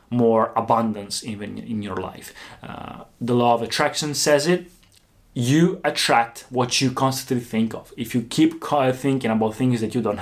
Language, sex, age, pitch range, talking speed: Italian, male, 20-39, 115-145 Hz, 170 wpm